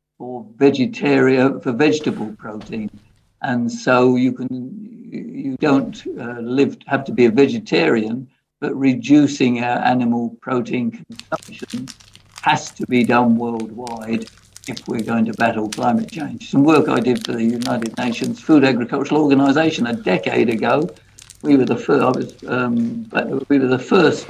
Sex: male